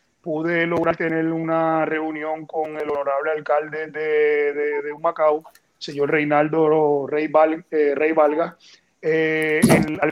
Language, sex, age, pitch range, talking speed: Spanish, male, 30-49, 150-170 Hz, 130 wpm